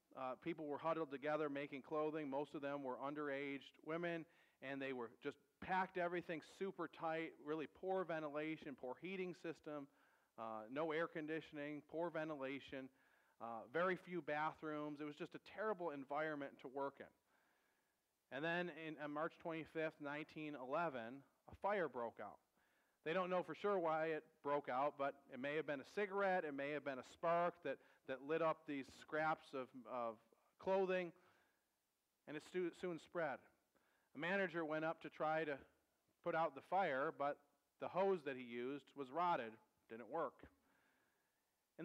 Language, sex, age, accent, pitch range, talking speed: English, male, 40-59, American, 145-180 Hz, 165 wpm